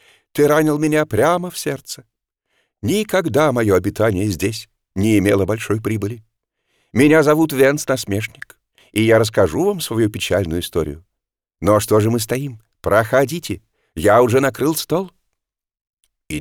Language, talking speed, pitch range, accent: Russian, 130 wpm, 100-150 Hz, native